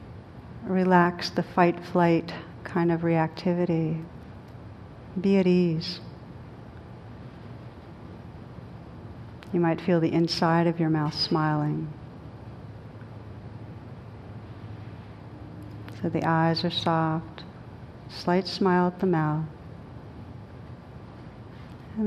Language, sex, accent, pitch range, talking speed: English, female, American, 125-175 Hz, 80 wpm